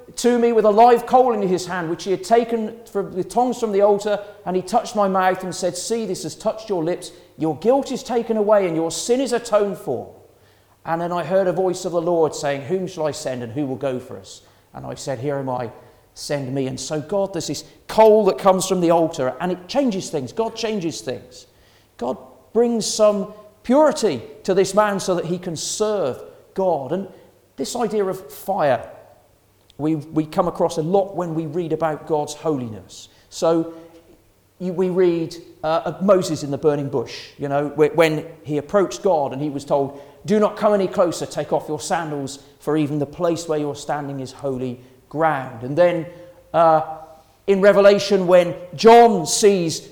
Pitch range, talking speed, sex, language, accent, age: 150-200 Hz, 200 wpm, male, English, British, 40-59